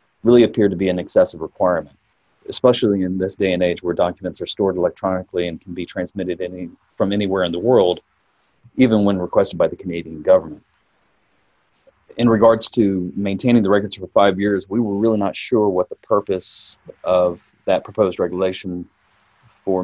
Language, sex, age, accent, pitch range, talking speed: English, male, 30-49, American, 90-100 Hz, 170 wpm